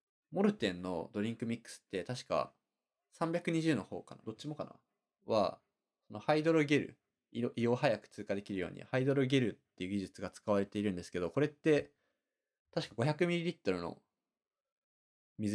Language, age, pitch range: Japanese, 20-39, 100-140 Hz